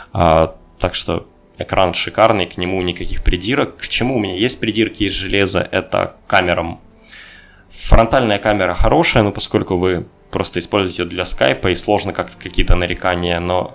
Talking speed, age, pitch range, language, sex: 150 wpm, 20-39, 90-105 Hz, Russian, male